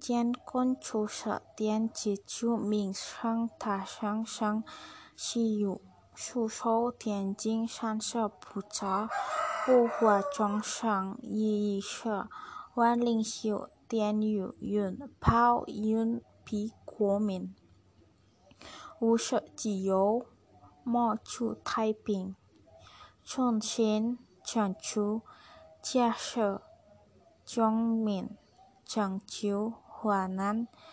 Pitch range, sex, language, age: 205-235 Hz, female, Indonesian, 20-39